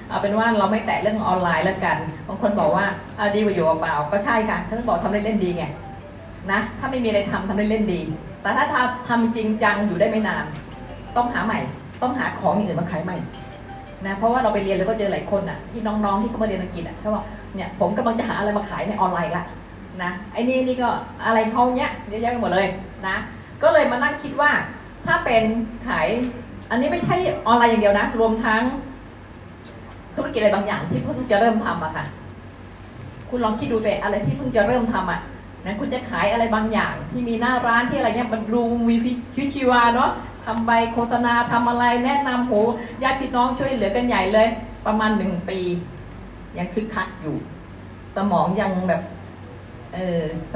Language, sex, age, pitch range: Thai, female, 20-39, 195-240 Hz